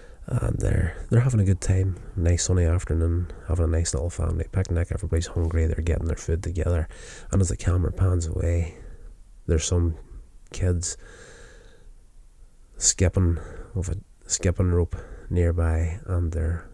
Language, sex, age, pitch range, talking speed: English, male, 20-39, 80-90 Hz, 145 wpm